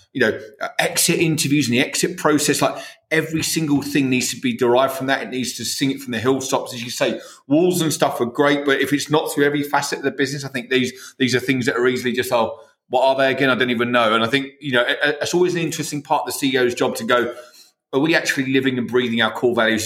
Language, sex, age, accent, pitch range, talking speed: English, male, 30-49, British, 120-150 Hz, 270 wpm